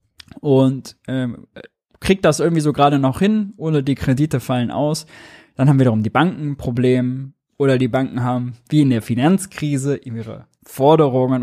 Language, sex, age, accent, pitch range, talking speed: German, male, 20-39, German, 120-150 Hz, 165 wpm